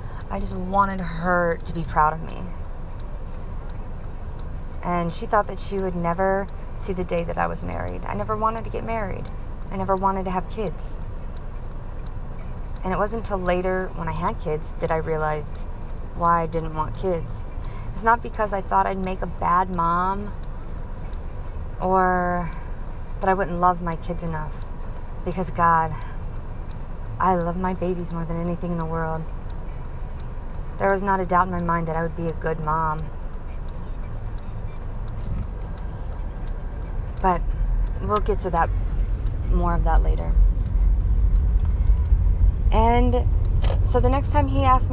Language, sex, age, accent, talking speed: English, female, 30-49, American, 150 wpm